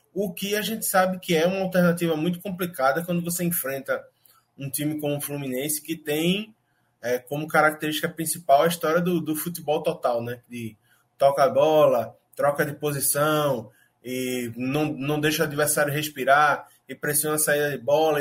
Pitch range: 140-170 Hz